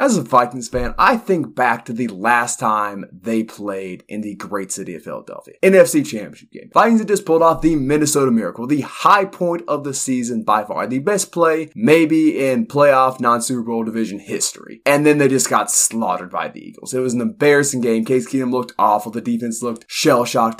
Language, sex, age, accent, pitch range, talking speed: English, male, 20-39, American, 115-150 Hz, 205 wpm